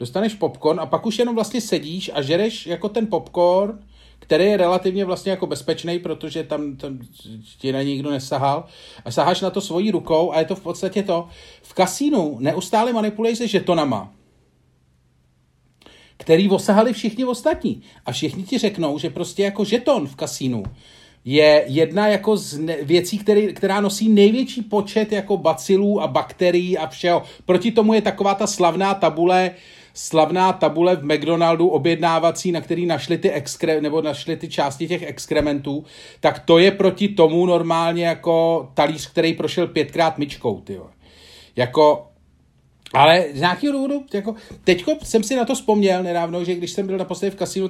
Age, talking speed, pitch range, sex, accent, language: 40-59, 160 wpm, 150-195 Hz, male, native, Czech